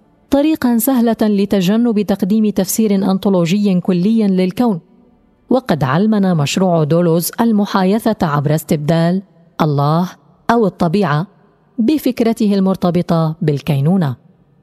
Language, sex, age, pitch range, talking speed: Arabic, female, 30-49, 165-220 Hz, 85 wpm